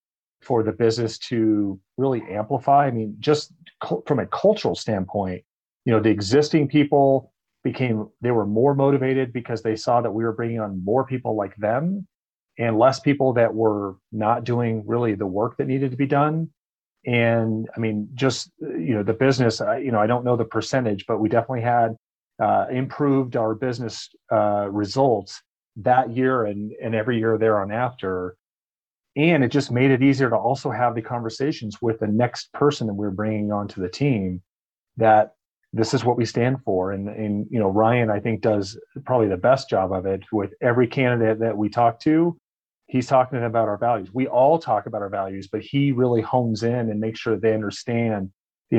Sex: male